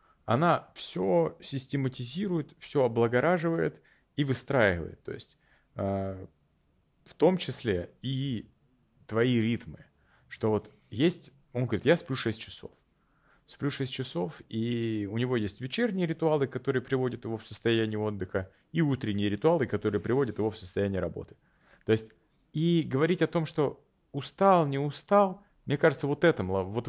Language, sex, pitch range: Russian, male, 110-160 Hz